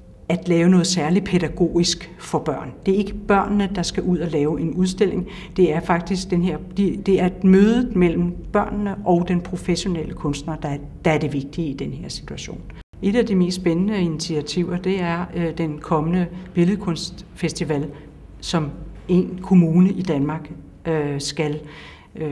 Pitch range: 155-180 Hz